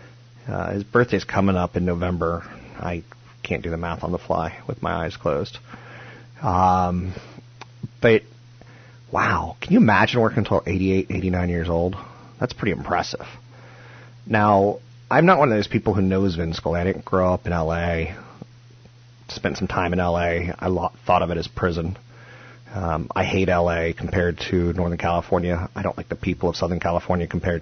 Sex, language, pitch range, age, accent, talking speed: male, English, 90-120 Hz, 30-49, American, 170 wpm